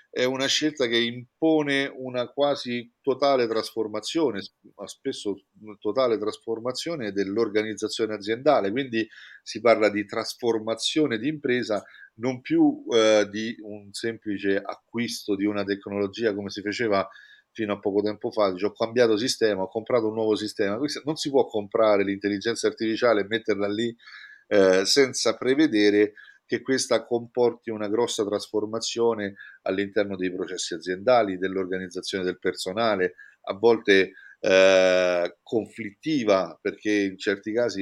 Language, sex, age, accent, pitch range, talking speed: Italian, male, 40-59, native, 100-125 Hz, 130 wpm